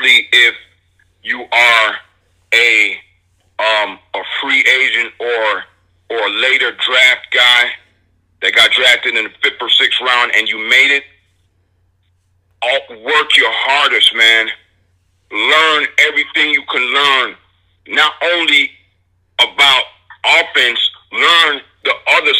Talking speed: 120 wpm